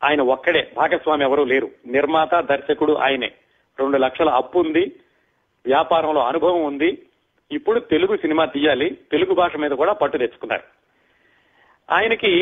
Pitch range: 150-195 Hz